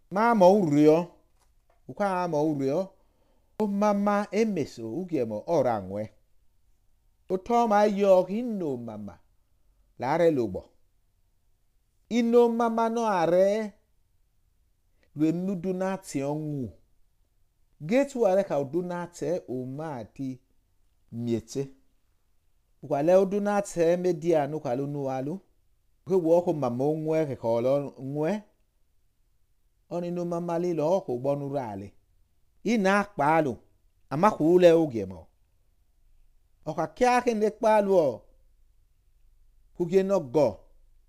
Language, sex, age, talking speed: English, male, 50-69, 100 wpm